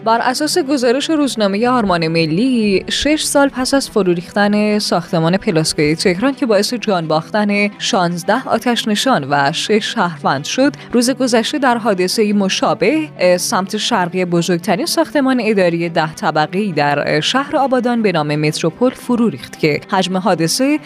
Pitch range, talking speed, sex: 175-240 Hz, 140 wpm, female